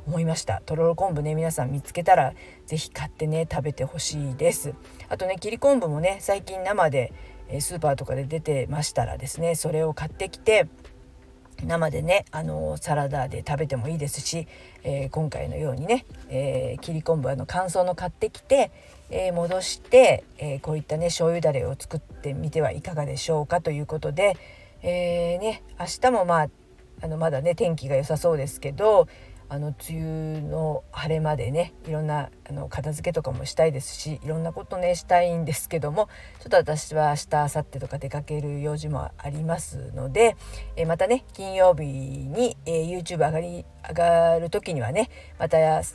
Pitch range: 145-175 Hz